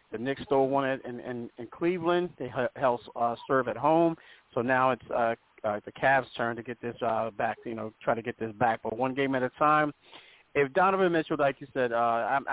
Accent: American